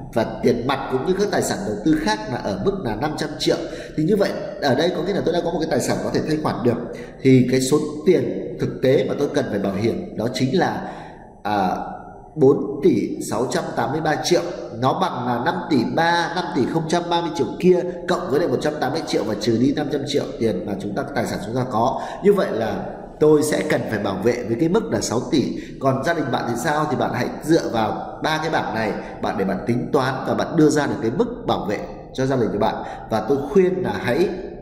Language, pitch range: Vietnamese, 120-170 Hz